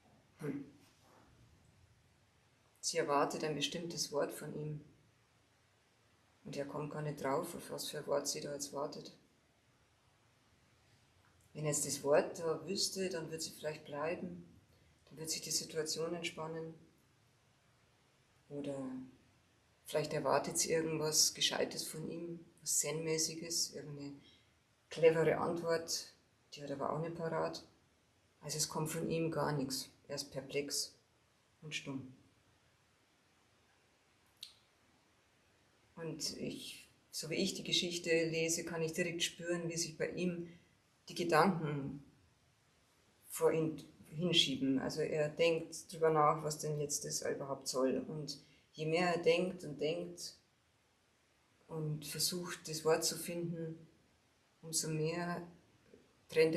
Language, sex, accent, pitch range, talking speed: German, female, German, 135-165 Hz, 125 wpm